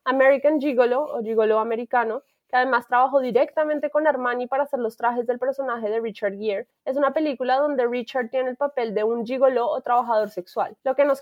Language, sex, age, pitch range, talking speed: Spanish, female, 20-39, 230-275 Hz, 200 wpm